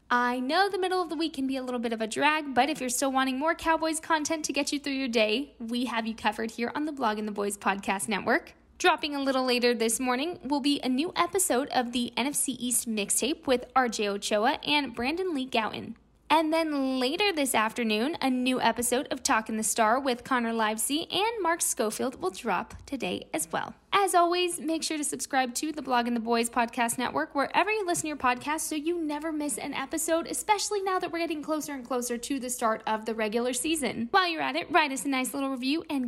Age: 10-29